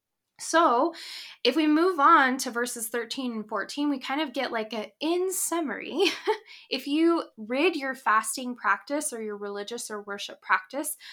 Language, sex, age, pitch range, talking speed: English, female, 10-29, 210-285 Hz, 160 wpm